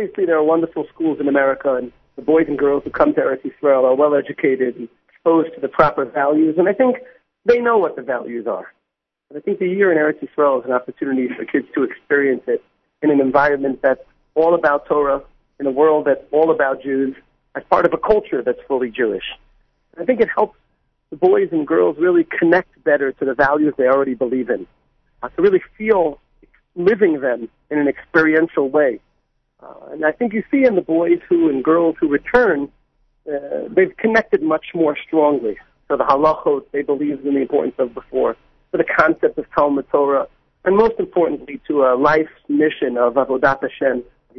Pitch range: 140-200 Hz